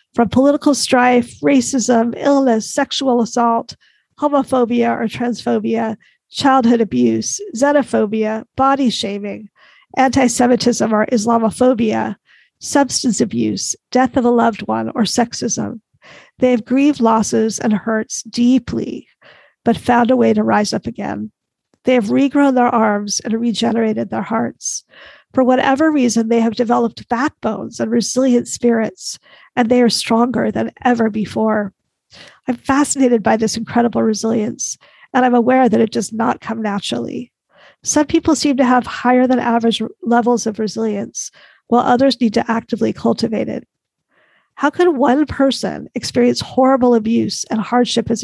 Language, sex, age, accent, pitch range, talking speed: English, female, 50-69, American, 225-255 Hz, 140 wpm